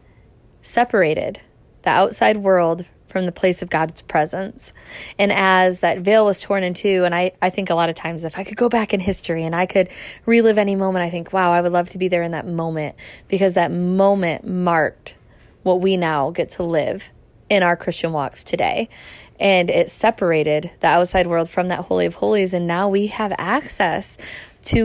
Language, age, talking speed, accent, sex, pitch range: English, 20-39, 200 wpm, American, female, 175-195 Hz